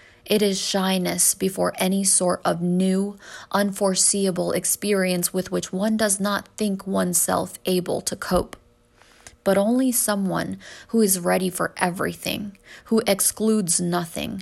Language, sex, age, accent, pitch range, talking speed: English, female, 20-39, American, 170-195 Hz, 130 wpm